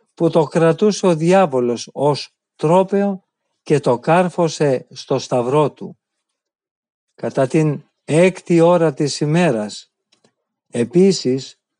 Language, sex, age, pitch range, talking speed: Greek, male, 50-69, 150-185 Hz, 100 wpm